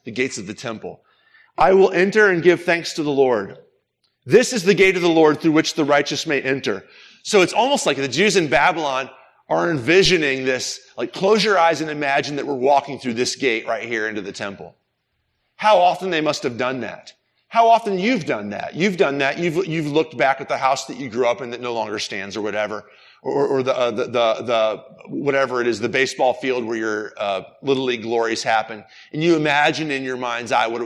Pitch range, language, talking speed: 120-170 Hz, English, 230 wpm